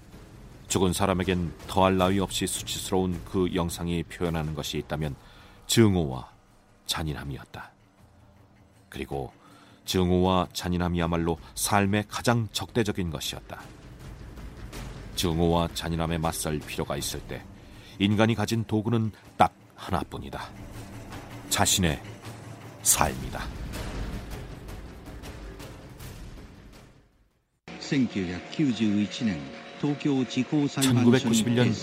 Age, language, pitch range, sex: 40-59, Korean, 85-110 Hz, male